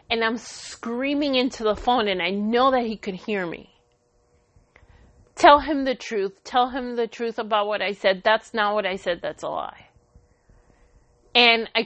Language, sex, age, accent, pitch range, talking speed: English, female, 30-49, American, 205-260 Hz, 180 wpm